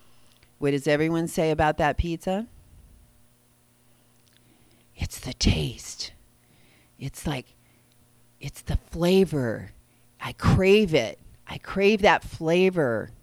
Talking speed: 100 wpm